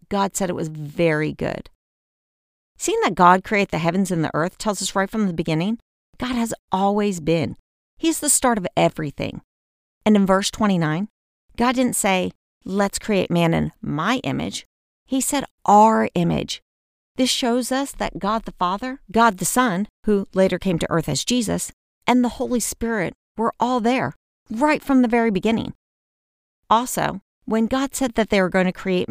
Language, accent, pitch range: English, American, 170-225 Hz